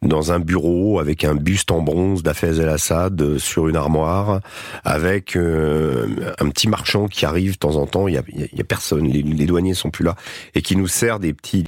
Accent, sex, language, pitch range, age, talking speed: French, male, French, 75-95 Hz, 40-59, 210 wpm